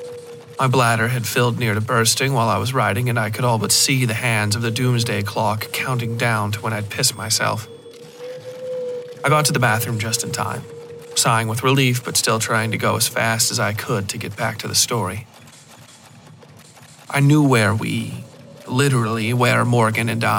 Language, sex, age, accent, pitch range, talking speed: English, male, 40-59, American, 115-130 Hz, 190 wpm